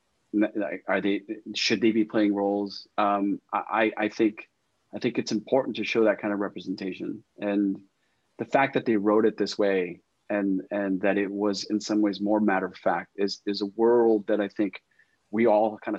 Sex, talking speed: male, 195 wpm